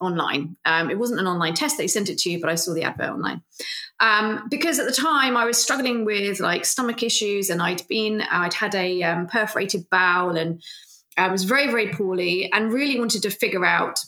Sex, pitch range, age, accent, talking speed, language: female, 185-235 Hz, 30-49, British, 215 wpm, English